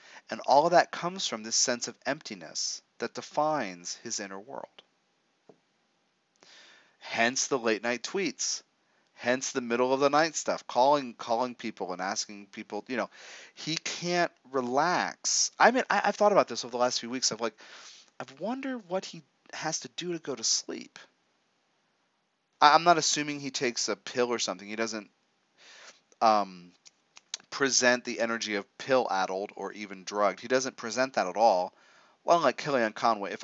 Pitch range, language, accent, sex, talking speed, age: 105-140 Hz, English, American, male, 170 wpm, 30-49